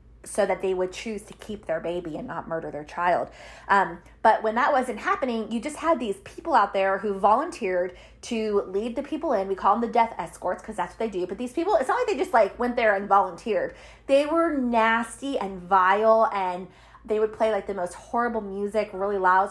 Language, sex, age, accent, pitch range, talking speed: English, female, 20-39, American, 190-255 Hz, 230 wpm